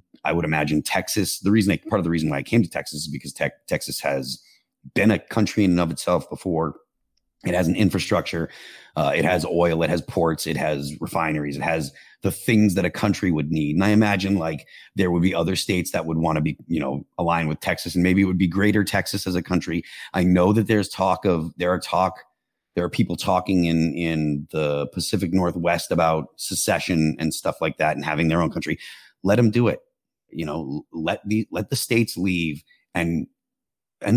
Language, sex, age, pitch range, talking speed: English, male, 30-49, 85-110 Hz, 215 wpm